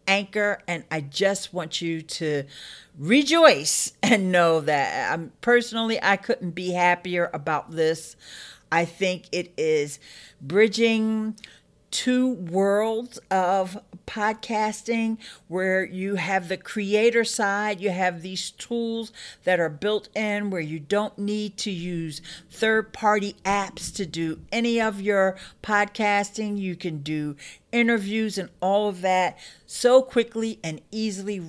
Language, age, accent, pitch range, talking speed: English, 50-69, American, 170-220 Hz, 130 wpm